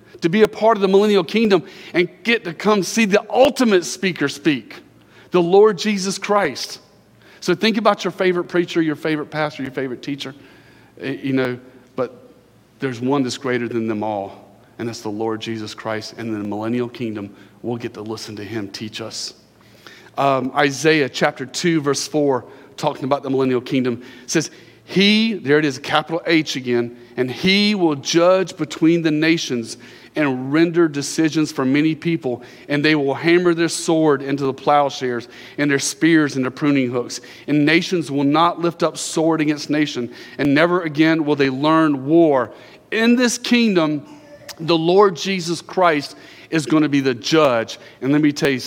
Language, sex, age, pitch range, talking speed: English, male, 40-59, 125-170 Hz, 175 wpm